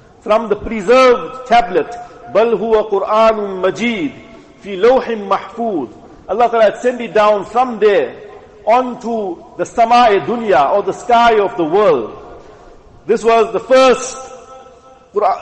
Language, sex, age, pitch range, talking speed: English, male, 50-69, 200-255 Hz, 110 wpm